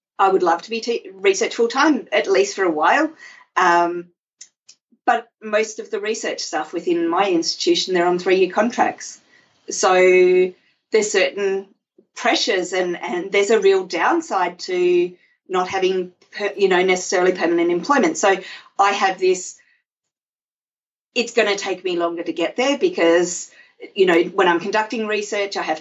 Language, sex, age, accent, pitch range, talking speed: English, female, 40-59, Australian, 175-240 Hz, 160 wpm